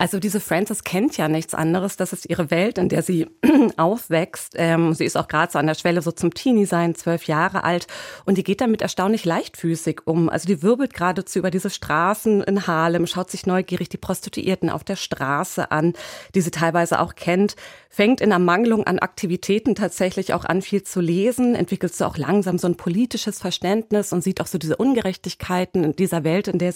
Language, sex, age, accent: German, female, 30-49, German